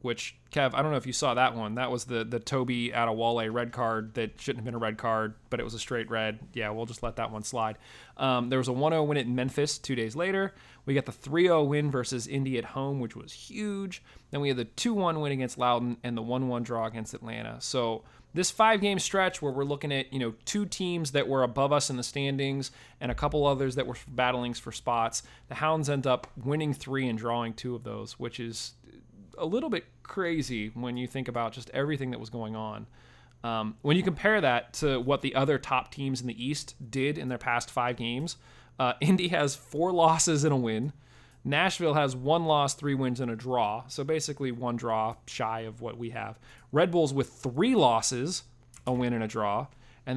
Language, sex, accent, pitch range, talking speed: English, male, American, 120-145 Hz, 225 wpm